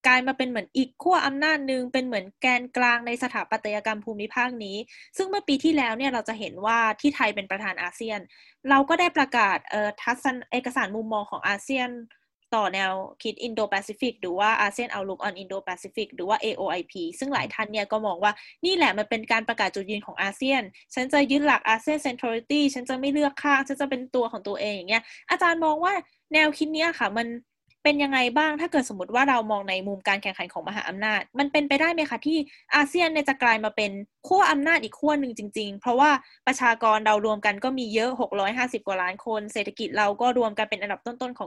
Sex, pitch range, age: female, 210-275 Hz, 10-29